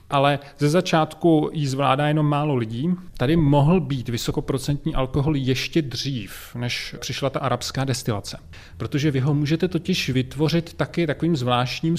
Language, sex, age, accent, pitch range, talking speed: Czech, male, 30-49, native, 125-150 Hz, 145 wpm